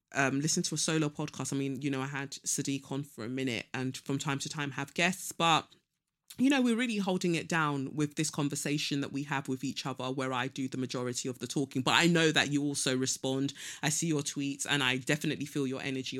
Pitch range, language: 130-160 Hz, English